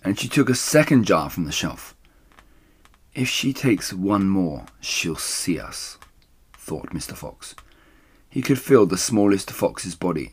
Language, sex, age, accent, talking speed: English, male, 30-49, British, 155 wpm